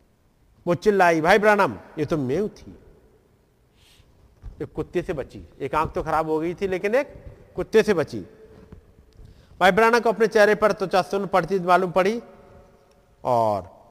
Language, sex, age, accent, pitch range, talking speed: Hindi, male, 50-69, native, 175-230 Hz, 155 wpm